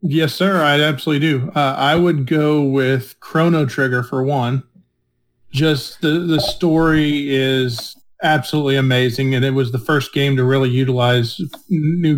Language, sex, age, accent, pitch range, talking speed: English, male, 40-59, American, 135-160 Hz, 155 wpm